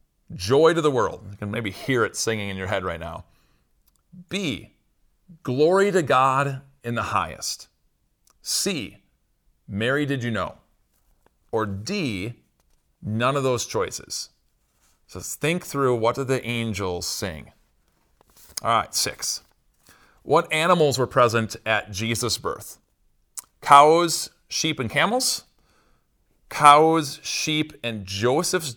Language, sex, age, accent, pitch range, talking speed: English, male, 40-59, American, 110-155 Hz, 125 wpm